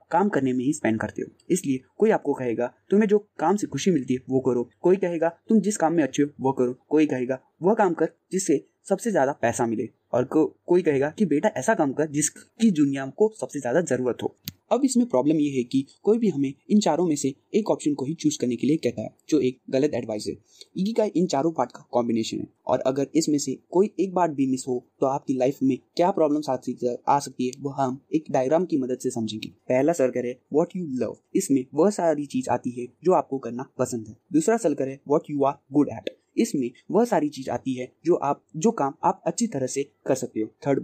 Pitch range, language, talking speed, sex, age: 130-165 Hz, Hindi, 225 wpm, male, 20-39